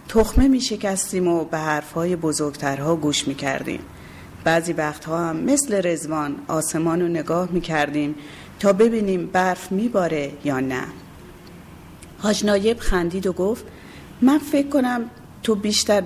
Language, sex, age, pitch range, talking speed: Persian, female, 40-59, 150-195 Hz, 125 wpm